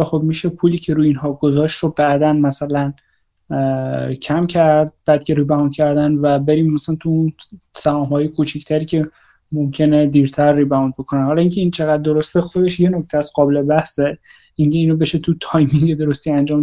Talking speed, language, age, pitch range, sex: 170 wpm, Persian, 20-39, 150-175 Hz, male